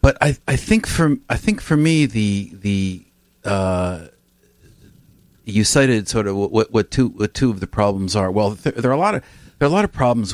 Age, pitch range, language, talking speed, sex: 50-69, 90-110 Hz, English, 215 wpm, male